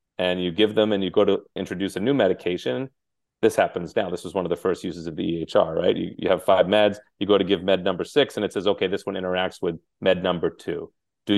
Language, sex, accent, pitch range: English, male, American, 90-105 Hz